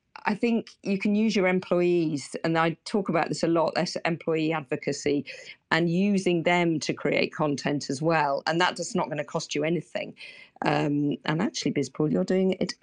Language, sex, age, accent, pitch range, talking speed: English, female, 50-69, British, 150-180 Hz, 190 wpm